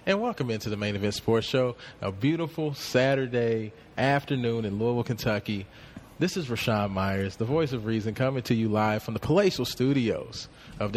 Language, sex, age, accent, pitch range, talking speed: English, male, 30-49, American, 115-165 Hz, 175 wpm